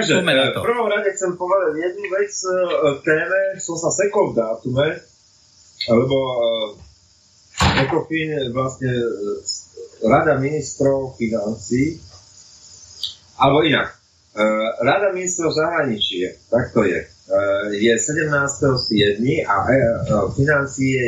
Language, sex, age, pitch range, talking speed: Slovak, male, 30-49, 105-145 Hz, 95 wpm